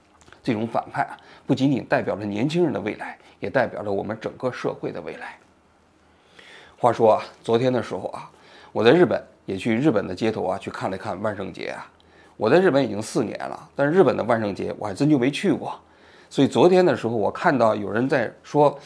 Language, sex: Chinese, male